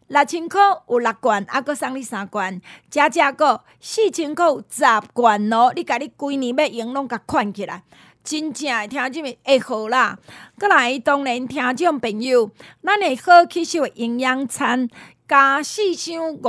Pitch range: 225-300 Hz